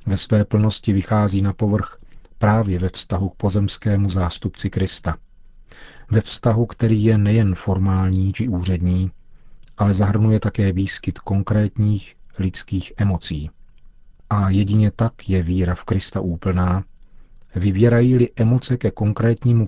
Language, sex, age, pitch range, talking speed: Czech, male, 40-59, 95-110 Hz, 120 wpm